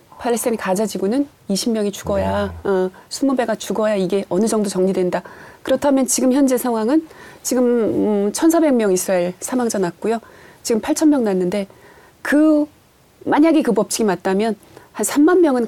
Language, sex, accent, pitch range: Korean, female, native, 185-270 Hz